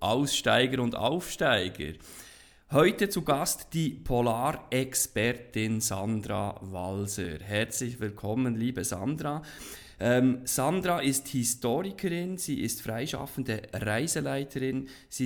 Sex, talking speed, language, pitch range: male, 90 wpm, German, 105-135 Hz